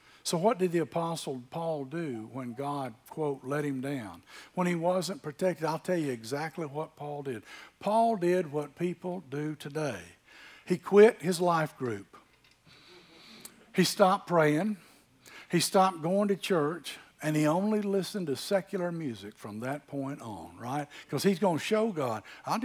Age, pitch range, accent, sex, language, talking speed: 60-79, 140-185 Hz, American, male, English, 165 wpm